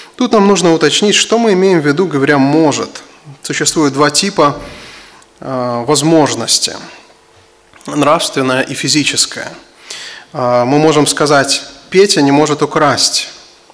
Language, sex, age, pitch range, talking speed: English, male, 20-39, 140-180 Hz, 115 wpm